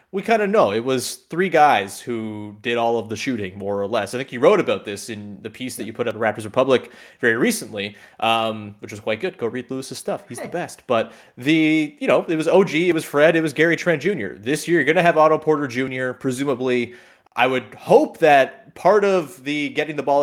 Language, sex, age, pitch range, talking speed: English, male, 30-49, 115-150 Hz, 245 wpm